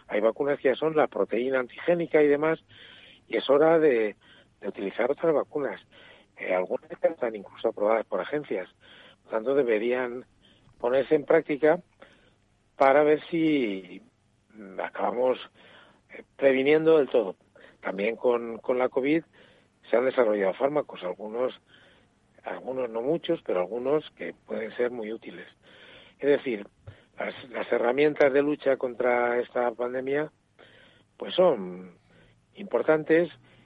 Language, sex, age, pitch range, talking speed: Spanish, male, 60-79, 115-145 Hz, 130 wpm